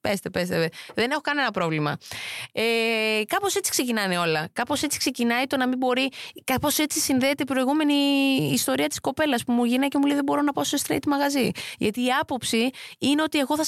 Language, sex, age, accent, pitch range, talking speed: Greek, female, 20-39, native, 210-305 Hz, 200 wpm